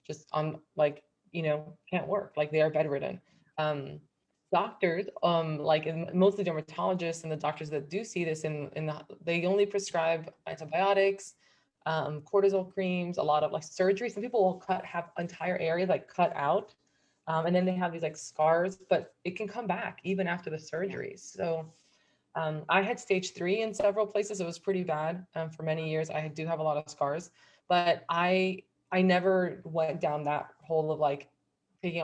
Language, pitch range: English, 155-185 Hz